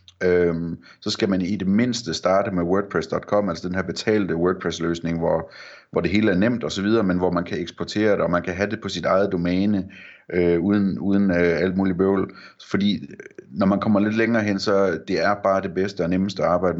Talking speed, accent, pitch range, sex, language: 220 wpm, native, 85-100 Hz, male, Danish